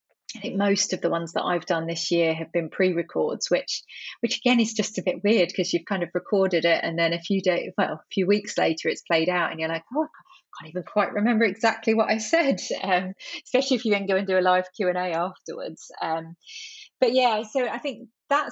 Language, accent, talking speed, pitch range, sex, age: English, British, 245 wpm, 170-215 Hz, female, 30-49